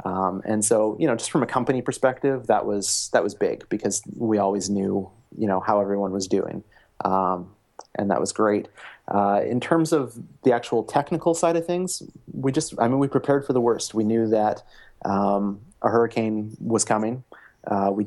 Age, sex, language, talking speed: 30-49, male, English, 195 wpm